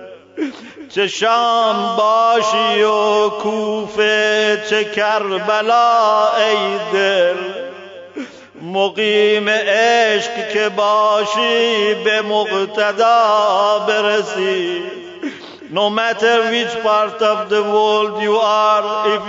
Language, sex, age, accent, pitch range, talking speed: English, male, 50-69, Turkish, 210-225 Hz, 30 wpm